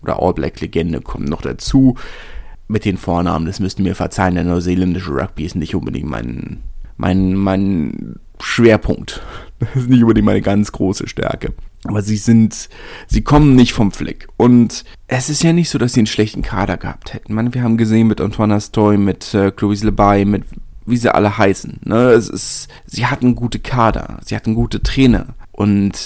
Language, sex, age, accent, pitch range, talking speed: German, male, 30-49, German, 95-115 Hz, 185 wpm